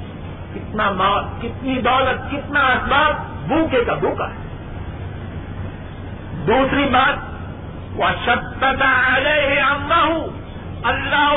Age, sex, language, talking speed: 50-69, male, Urdu, 95 wpm